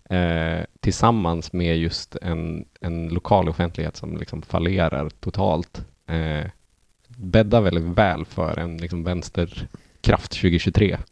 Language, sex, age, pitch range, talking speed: Swedish, male, 20-39, 85-100 Hz, 115 wpm